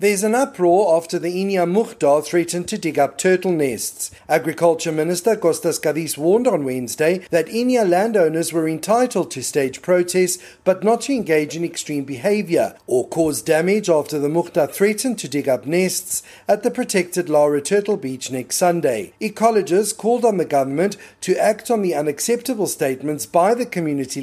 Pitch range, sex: 150-205 Hz, male